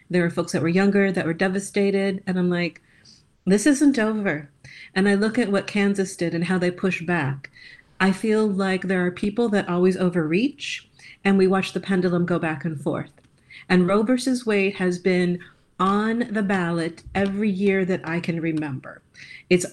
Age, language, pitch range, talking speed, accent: 40-59, English, 175-205 Hz, 185 wpm, American